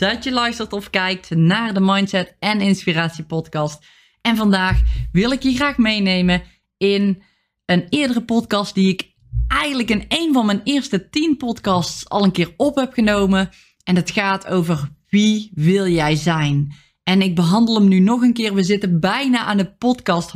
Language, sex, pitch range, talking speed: Dutch, female, 180-230 Hz, 175 wpm